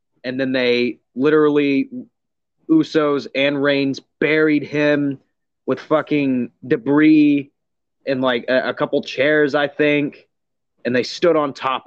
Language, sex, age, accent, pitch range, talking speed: English, male, 30-49, American, 135-195 Hz, 125 wpm